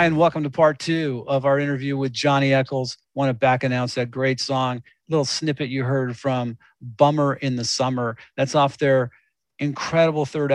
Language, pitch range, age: English, 130-150 Hz, 40-59